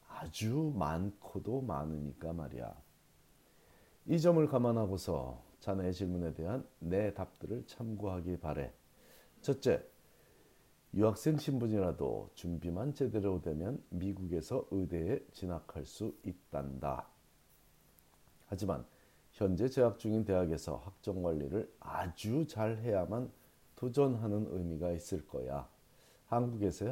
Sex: male